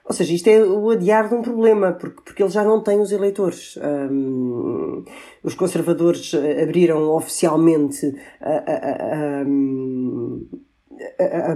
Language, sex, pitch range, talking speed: Portuguese, female, 145-185 Hz, 115 wpm